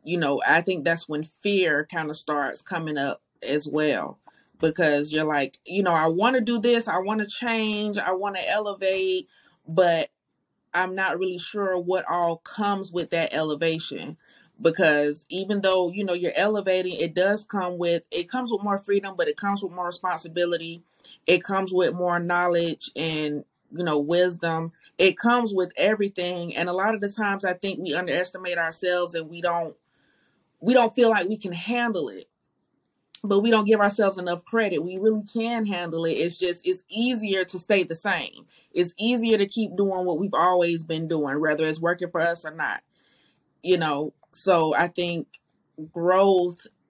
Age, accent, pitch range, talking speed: 30-49, American, 165-200 Hz, 185 wpm